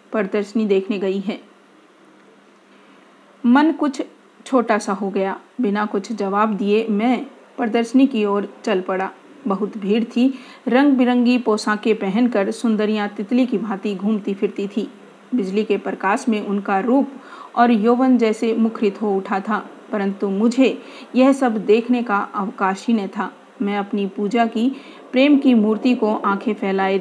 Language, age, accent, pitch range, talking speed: Hindi, 40-59, native, 200-240 Hz, 150 wpm